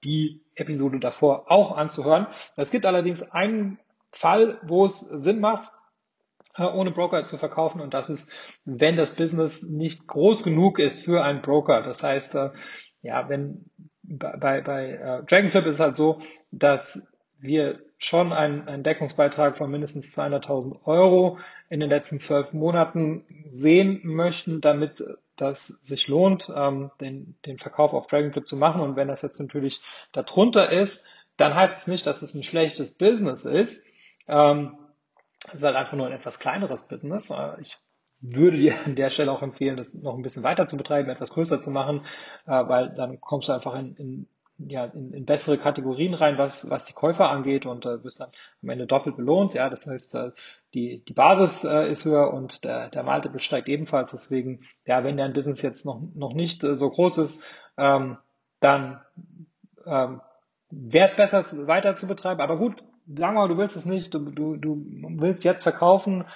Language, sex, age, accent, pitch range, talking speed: German, male, 30-49, German, 140-175 Hz, 180 wpm